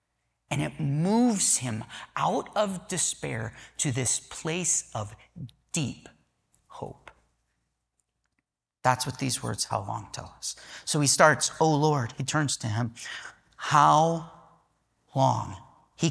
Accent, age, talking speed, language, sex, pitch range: American, 30-49, 125 wpm, English, male, 125-170 Hz